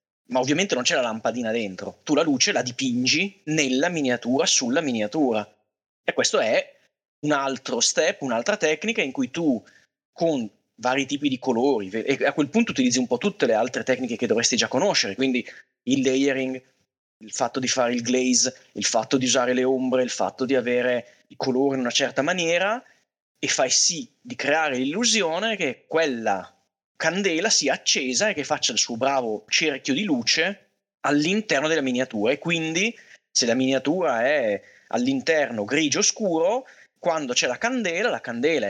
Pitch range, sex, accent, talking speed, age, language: 125-205 Hz, male, native, 170 wpm, 30-49, Italian